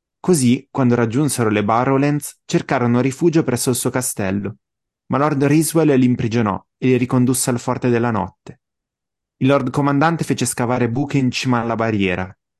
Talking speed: 155 wpm